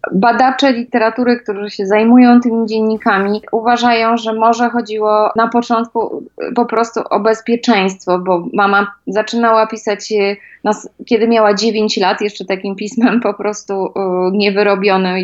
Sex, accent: female, native